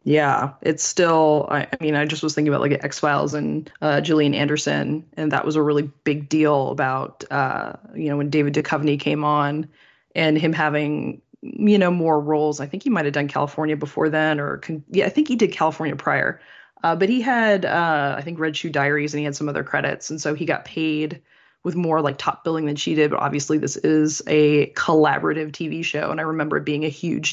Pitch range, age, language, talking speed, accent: 150-170 Hz, 20-39, English, 220 wpm, American